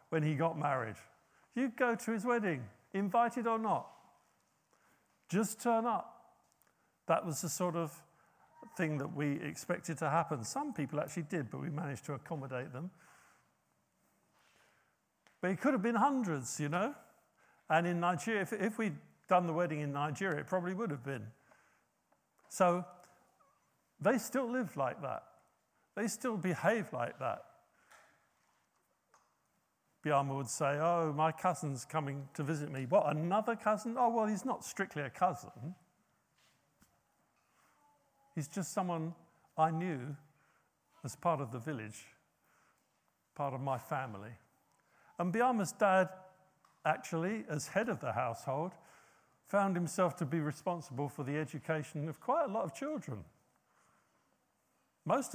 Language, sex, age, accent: English, male, 50-69, British